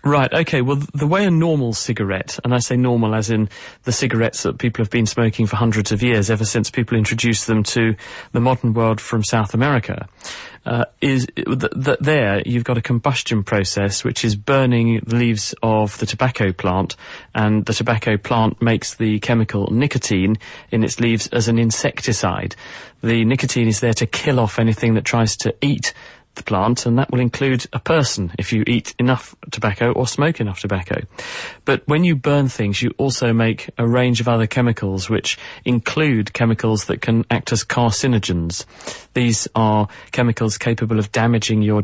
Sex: male